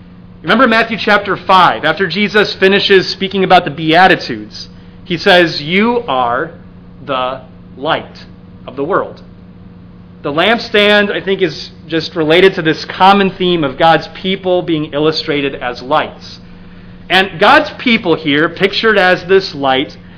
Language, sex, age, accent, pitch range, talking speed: English, male, 30-49, American, 150-200 Hz, 135 wpm